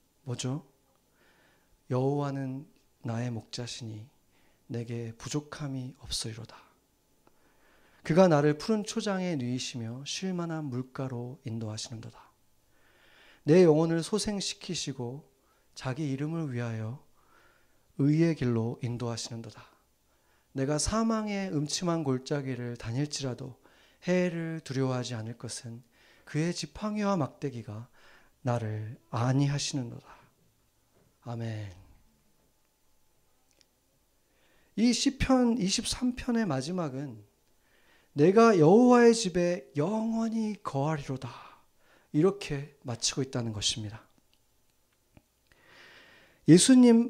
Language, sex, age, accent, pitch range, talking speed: English, male, 40-59, Korean, 120-175 Hz, 70 wpm